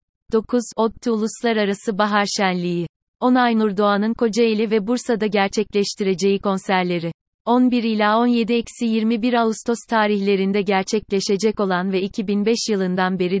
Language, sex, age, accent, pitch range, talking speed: Turkish, female, 30-49, native, 190-225 Hz, 105 wpm